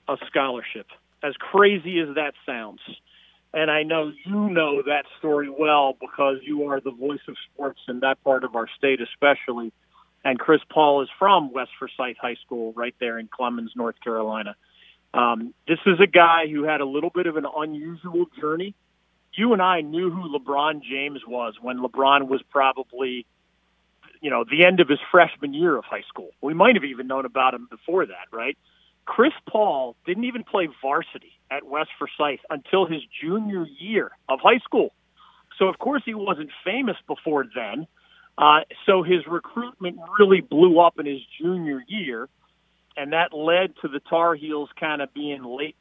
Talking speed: 180 wpm